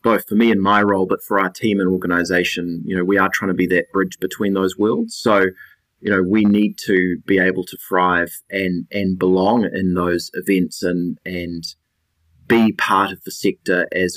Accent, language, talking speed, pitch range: Australian, English, 205 wpm, 90-100 Hz